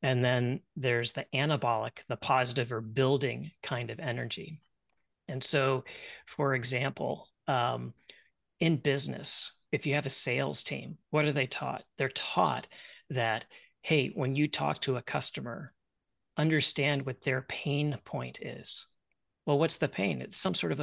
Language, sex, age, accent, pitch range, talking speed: English, male, 30-49, American, 125-145 Hz, 155 wpm